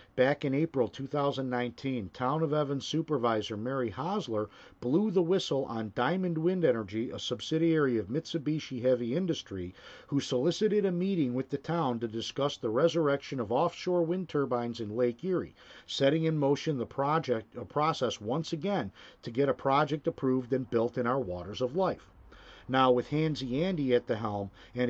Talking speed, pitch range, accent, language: 165 wpm, 115-150 Hz, American, English